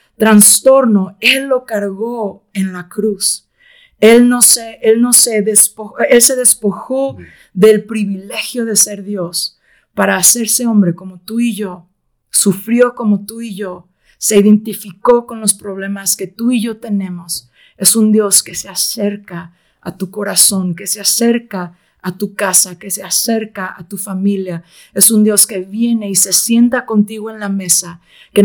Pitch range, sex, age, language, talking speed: 195-230 Hz, female, 50-69, Spanish, 165 wpm